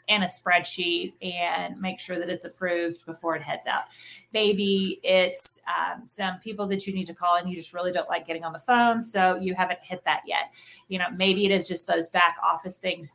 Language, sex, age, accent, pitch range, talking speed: English, female, 30-49, American, 175-195 Hz, 225 wpm